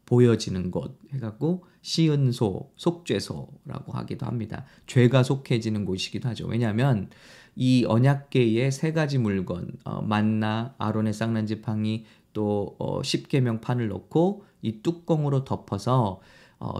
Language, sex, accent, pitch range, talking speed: English, male, Korean, 110-160 Hz, 100 wpm